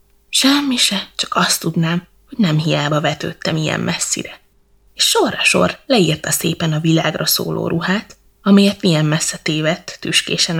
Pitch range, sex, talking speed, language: 160-190 Hz, female, 135 wpm, Hungarian